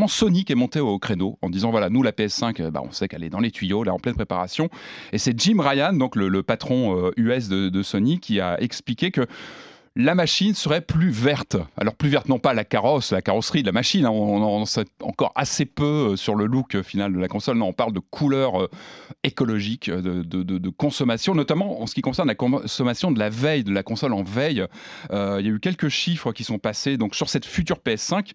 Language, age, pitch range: French, 30-49, 105-155 Hz